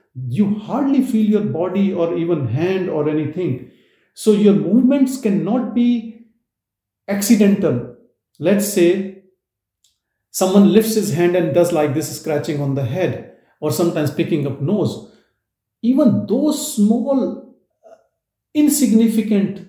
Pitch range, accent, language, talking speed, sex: 145-220 Hz, Indian, English, 120 wpm, male